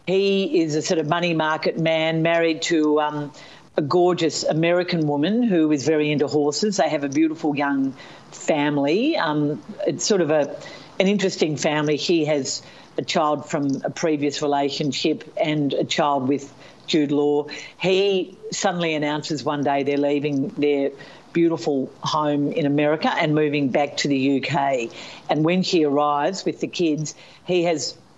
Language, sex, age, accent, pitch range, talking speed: English, female, 50-69, Australian, 145-175 Hz, 160 wpm